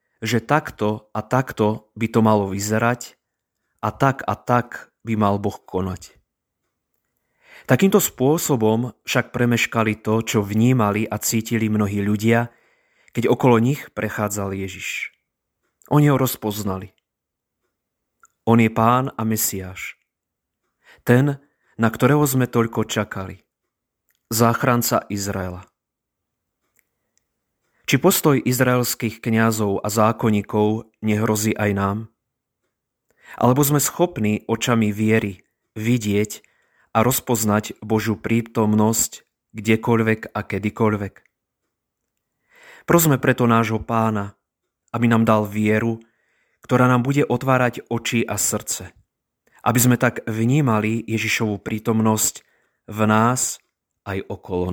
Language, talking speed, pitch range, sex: Slovak, 105 wpm, 105-120 Hz, male